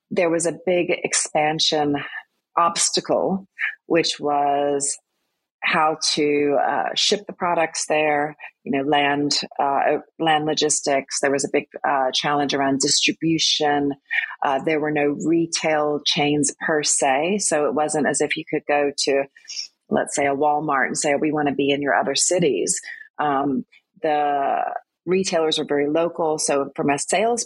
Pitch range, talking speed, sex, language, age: 145-175 Hz, 155 wpm, female, English, 40-59